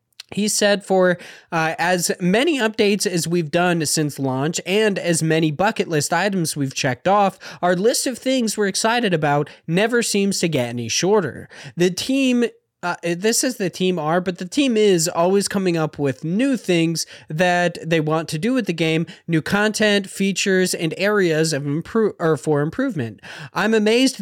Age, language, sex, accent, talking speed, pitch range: 20-39, English, male, American, 180 wpm, 160-205 Hz